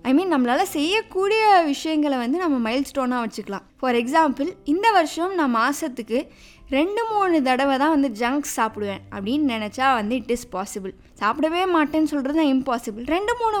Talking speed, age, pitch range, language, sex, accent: 160 wpm, 20-39, 255-360 Hz, Tamil, female, native